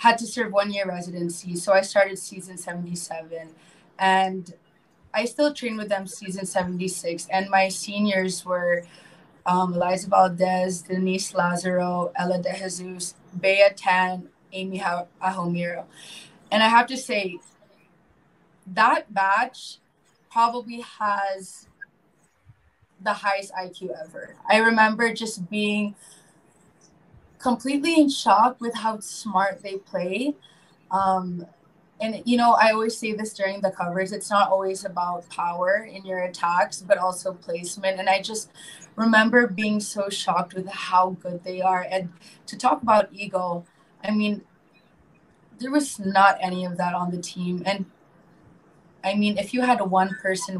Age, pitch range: 20-39, 180-210 Hz